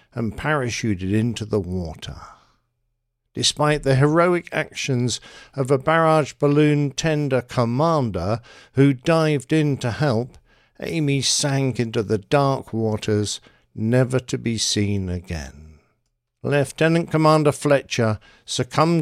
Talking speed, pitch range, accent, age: 110 wpm, 110-150 Hz, British, 50-69